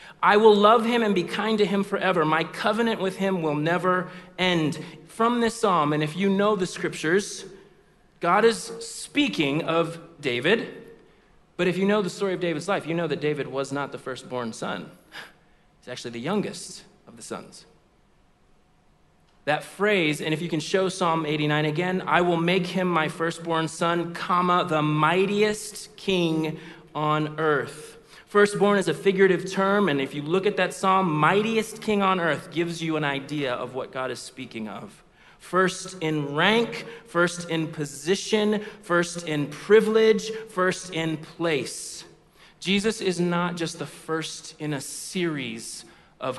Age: 30-49